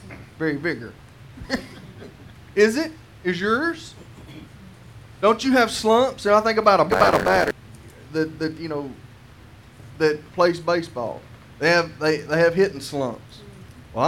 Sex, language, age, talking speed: male, English, 30-49, 130 wpm